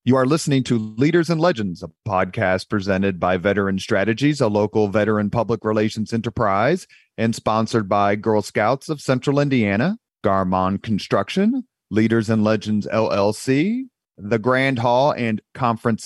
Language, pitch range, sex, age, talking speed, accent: English, 100-130 Hz, male, 40-59, 140 wpm, American